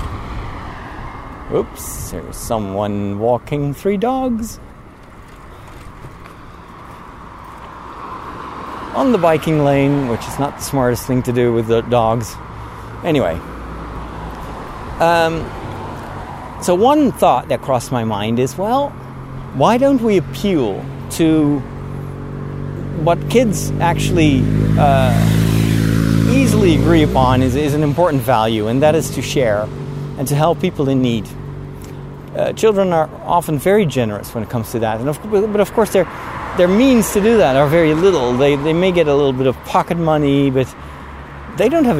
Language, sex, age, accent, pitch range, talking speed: English, male, 50-69, American, 110-160 Hz, 140 wpm